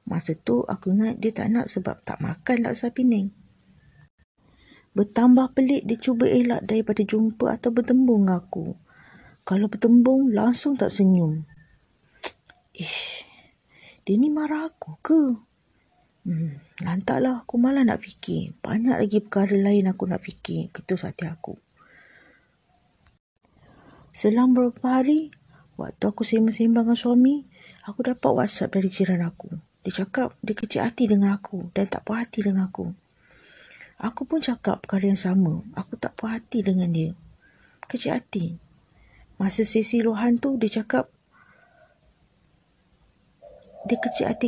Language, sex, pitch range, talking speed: Malay, female, 190-245 Hz, 130 wpm